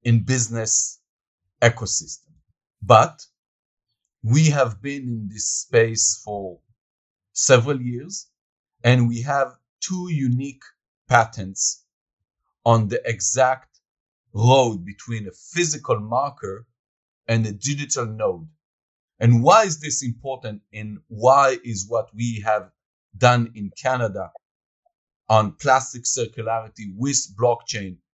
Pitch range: 110-140 Hz